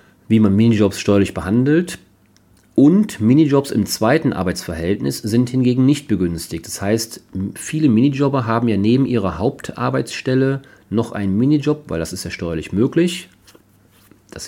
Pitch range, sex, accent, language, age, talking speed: 95-130 Hz, male, German, German, 40-59, 135 wpm